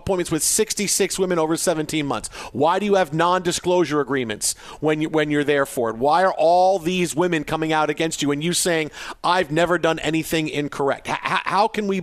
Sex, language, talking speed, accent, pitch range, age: male, English, 200 wpm, American, 140-170 Hz, 40-59